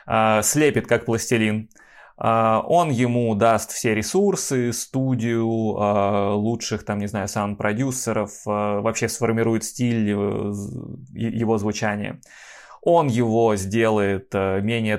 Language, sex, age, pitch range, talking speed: Russian, male, 20-39, 105-120 Hz, 90 wpm